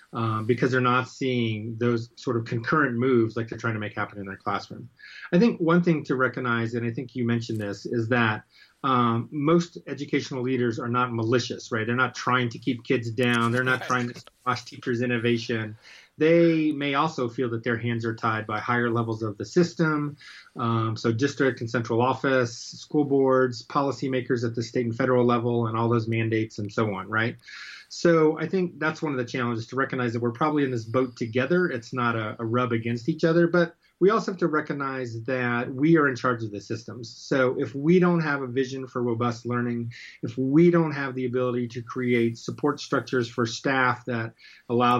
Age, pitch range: 30-49, 120-135 Hz